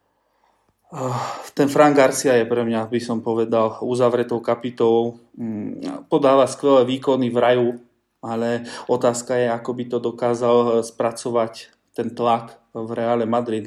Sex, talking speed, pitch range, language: male, 125 wpm, 110-125 Hz, Slovak